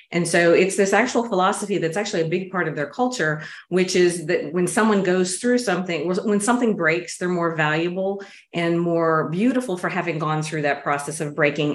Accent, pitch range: American, 160-190 Hz